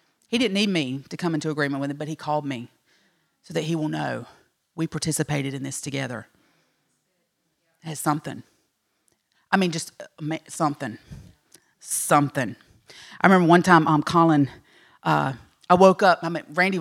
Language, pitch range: English, 150-185 Hz